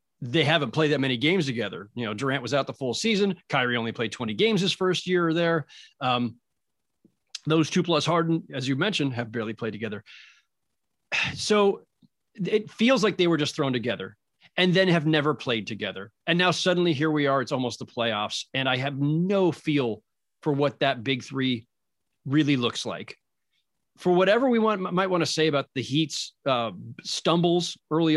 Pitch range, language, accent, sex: 135-180 Hz, English, American, male